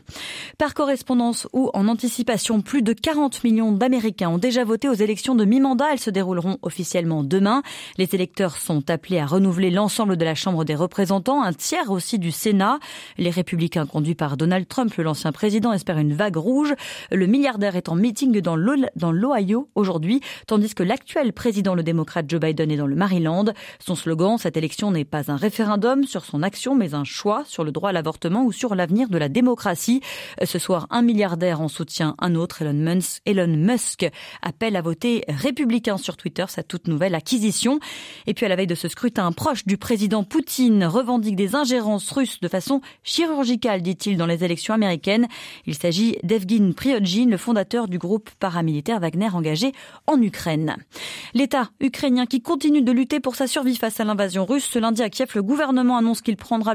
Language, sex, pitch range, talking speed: French, female, 180-250 Hz, 185 wpm